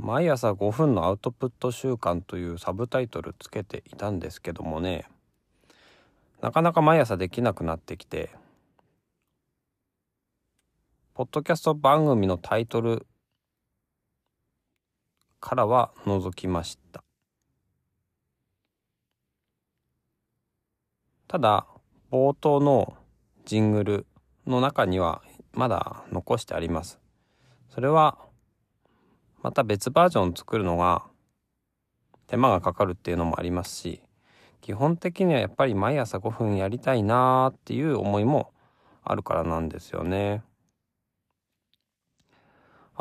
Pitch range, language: 95-130 Hz, Japanese